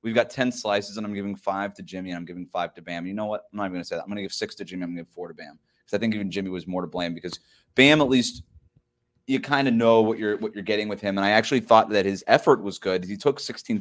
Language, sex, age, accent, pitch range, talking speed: English, male, 30-49, American, 100-125 Hz, 340 wpm